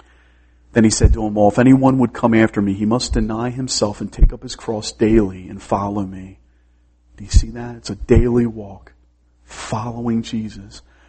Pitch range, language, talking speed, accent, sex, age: 90-115 Hz, English, 190 wpm, American, male, 40-59